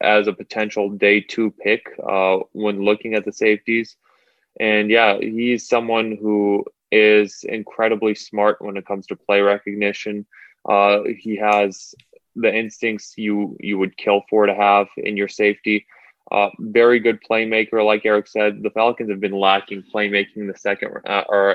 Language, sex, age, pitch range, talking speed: English, male, 20-39, 100-115 Hz, 165 wpm